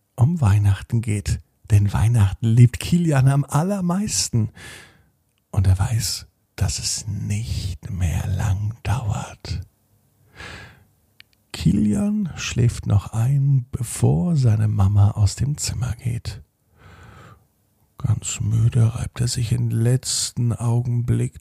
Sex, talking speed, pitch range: male, 105 wpm, 105-125 Hz